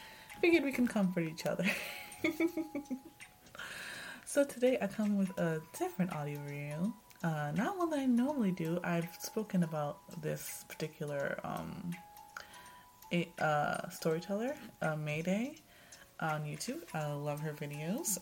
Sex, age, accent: female, 20-39, American